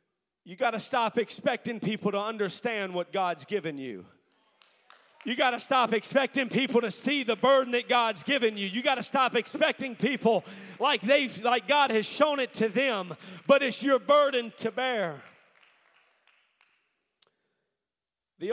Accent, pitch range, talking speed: American, 205-255 Hz, 155 wpm